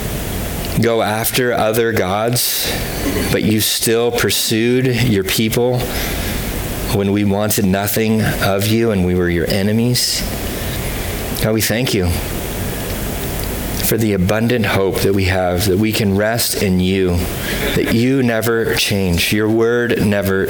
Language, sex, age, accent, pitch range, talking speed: English, male, 30-49, American, 90-110 Hz, 130 wpm